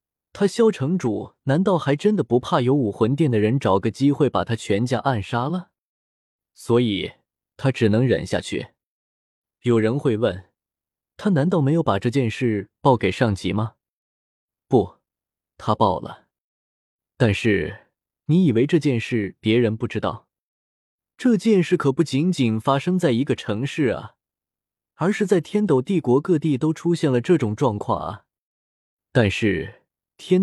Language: Chinese